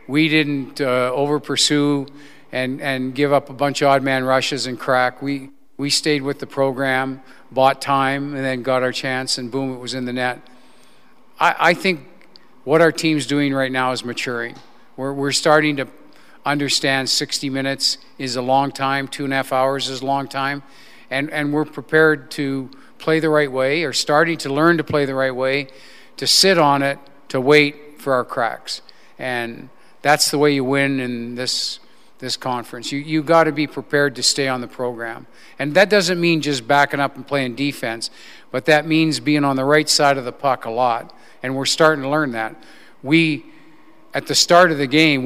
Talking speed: 200 wpm